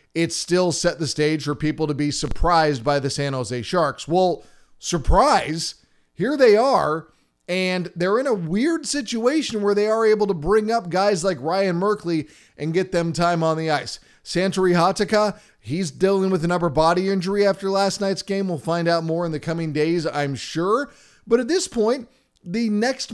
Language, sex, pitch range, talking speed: English, male, 145-195 Hz, 190 wpm